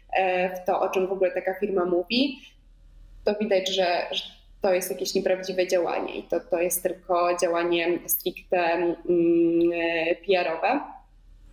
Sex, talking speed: female, 130 wpm